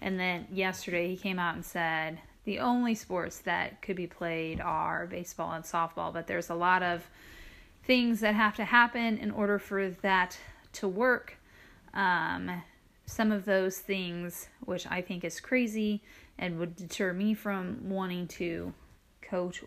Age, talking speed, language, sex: 30-49, 160 wpm, English, female